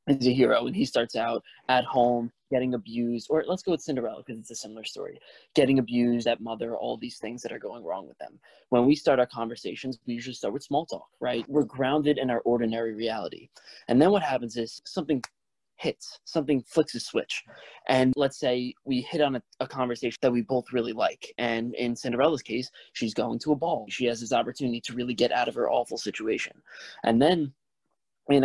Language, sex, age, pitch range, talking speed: English, male, 20-39, 115-135 Hz, 215 wpm